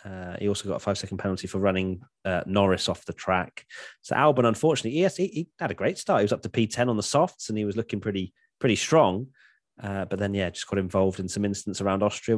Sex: male